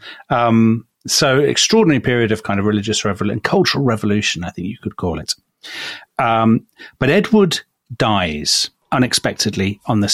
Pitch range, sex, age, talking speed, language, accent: 105-150 Hz, male, 40-59, 140 wpm, English, British